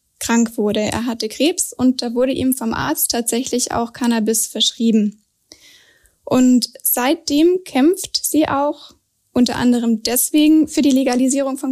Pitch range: 230-275 Hz